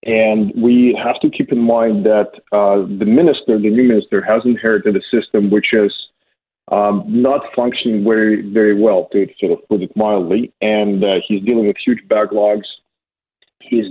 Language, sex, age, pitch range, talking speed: English, male, 40-59, 105-115 Hz, 175 wpm